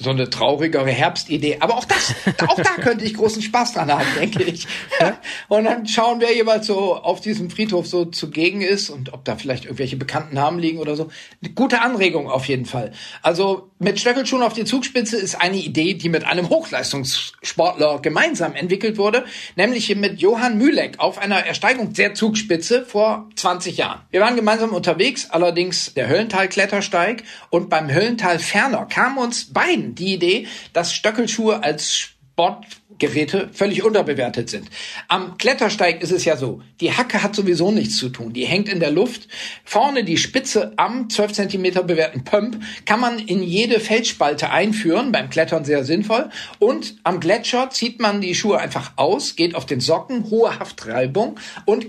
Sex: male